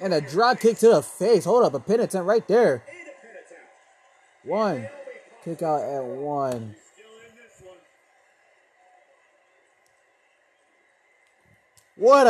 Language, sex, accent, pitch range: English, male, American, 145-200 Hz